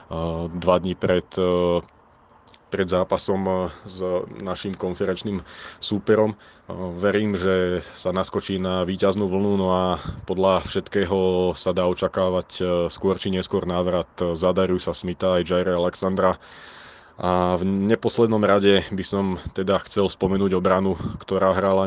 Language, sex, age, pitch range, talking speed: Slovak, male, 20-39, 90-95 Hz, 125 wpm